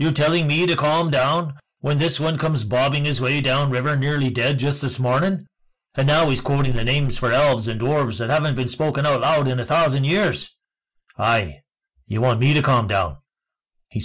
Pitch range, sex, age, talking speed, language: 95-130 Hz, male, 50-69, 205 wpm, English